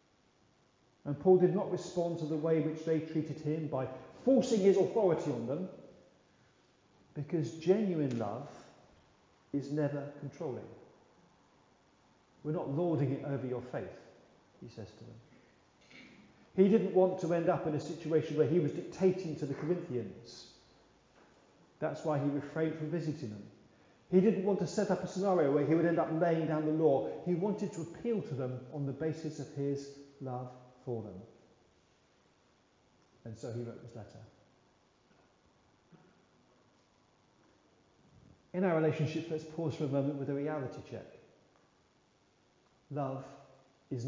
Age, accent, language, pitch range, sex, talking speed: 40-59, British, English, 130-160 Hz, male, 150 wpm